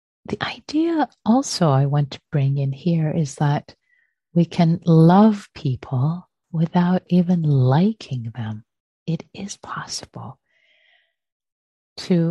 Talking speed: 110 wpm